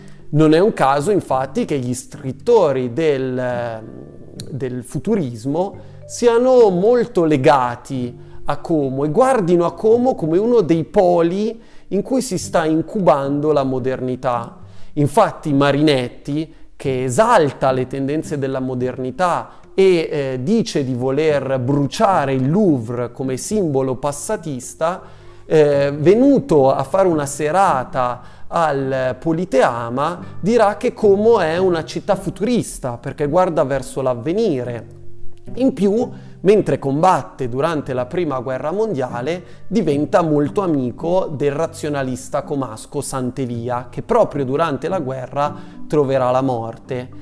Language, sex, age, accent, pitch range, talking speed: Italian, male, 30-49, native, 130-175 Hz, 115 wpm